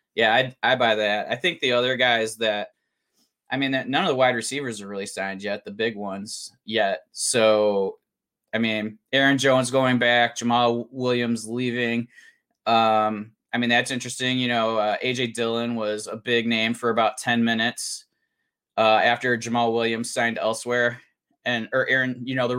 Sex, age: male, 20-39